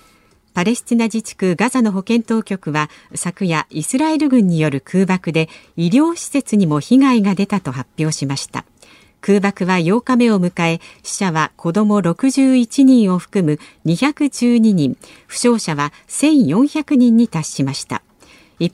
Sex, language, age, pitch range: female, Japanese, 50-69, 165-255 Hz